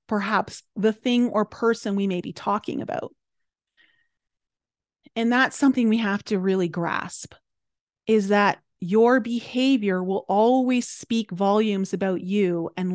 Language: English